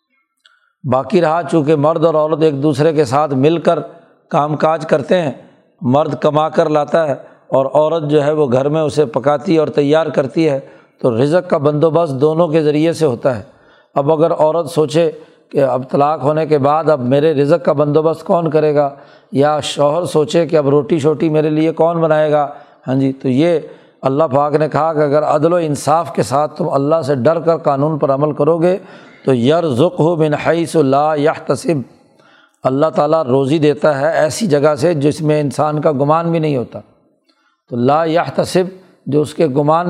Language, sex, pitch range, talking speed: Urdu, male, 145-165 Hz, 190 wpm